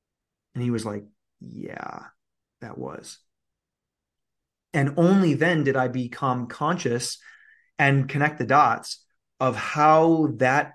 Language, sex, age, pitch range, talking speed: English, male, 30-49, 115-140 Hz, 115 wpm